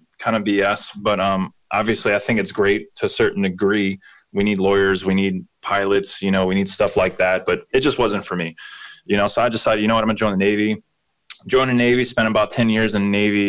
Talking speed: 250 wpm